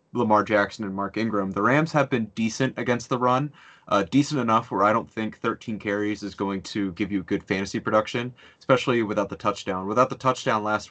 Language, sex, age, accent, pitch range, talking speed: English, male, 30-49, American, 100-120 Hz, 210 wpm